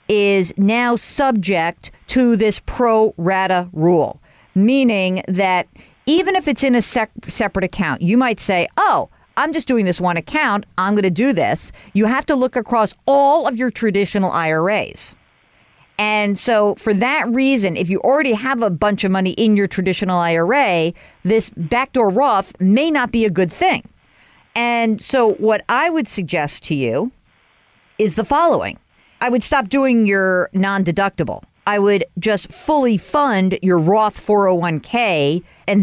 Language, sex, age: English, female, 50-69